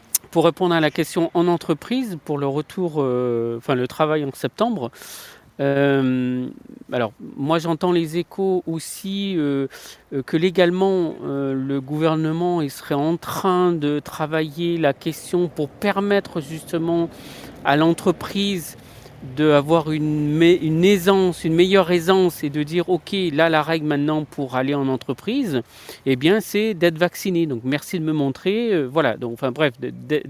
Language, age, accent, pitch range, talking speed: French, 50-69, French, 140-175 Hz, 155 wpm